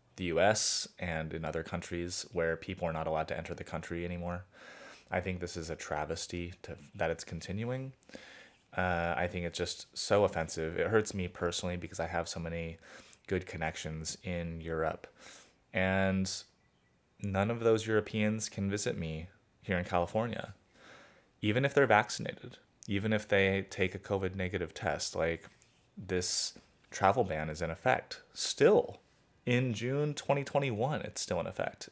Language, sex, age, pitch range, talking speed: English, male, 20-39, 85-105 Hz, 155 wpm